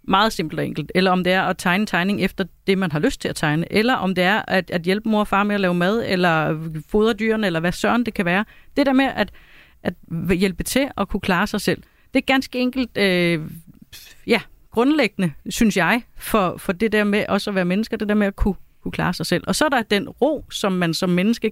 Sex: female